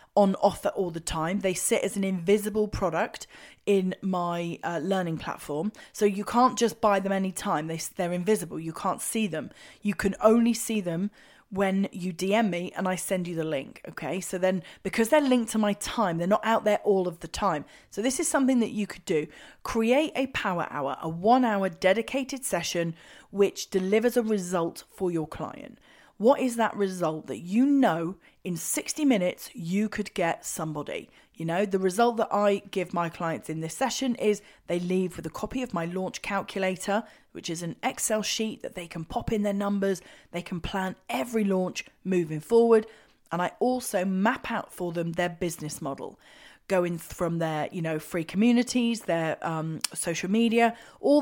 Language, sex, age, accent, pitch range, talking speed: English, female, 30-49, British, 175-225 Hz, 190 wpm